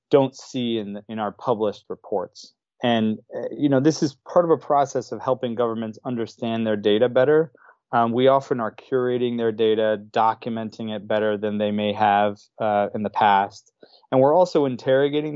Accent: American